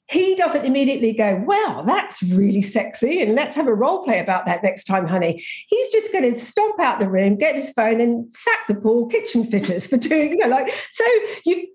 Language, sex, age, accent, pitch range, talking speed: English, female, 50-69, British, 205-290 Hz, 220 wpm